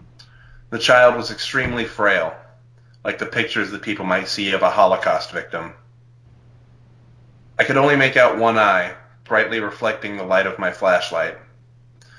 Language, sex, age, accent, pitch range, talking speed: English, male, 30-49, American, 110-120 Hz, 150 wpm